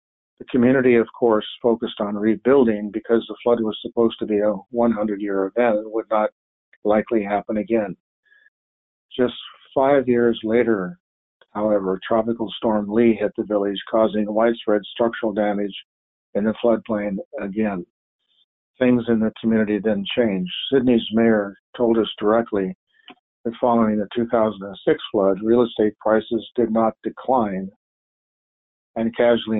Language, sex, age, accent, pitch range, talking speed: English, male, 50-69, American, 105-115 Hz, 135 wpm